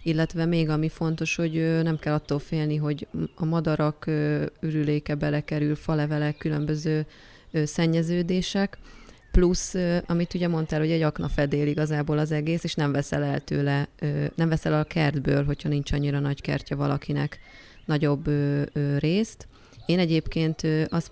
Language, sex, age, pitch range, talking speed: Hungarian, female, 30-49, 145-155 Hz, 140 wpm